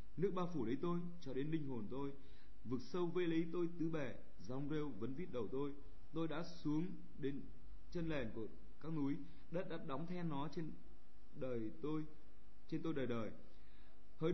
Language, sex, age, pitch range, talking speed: Vietnamese, male, 20-39, 120-160 Hz, 190 wpm